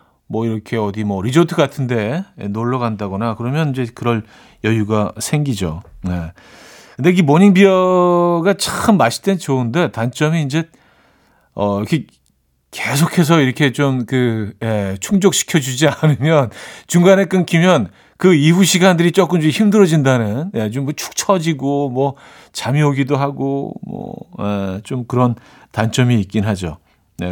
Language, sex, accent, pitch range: Korean, male, native, 110-160 Hz